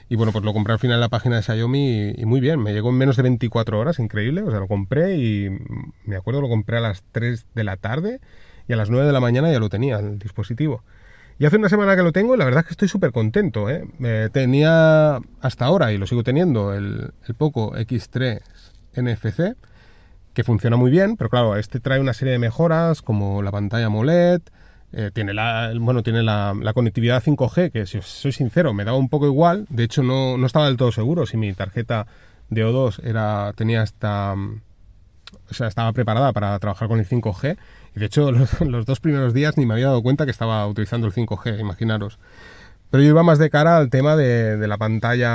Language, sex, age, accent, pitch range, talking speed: Spanish, male, 30-49, Spanish, 105-135 Hz, 225 wpm